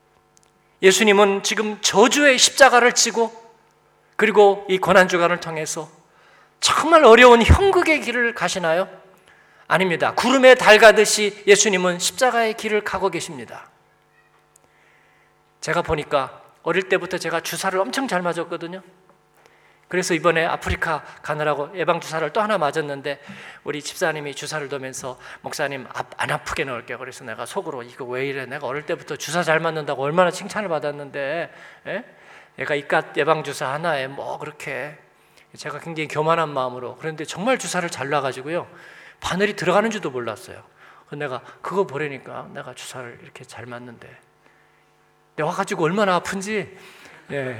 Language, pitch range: Korean, 150-210 Hz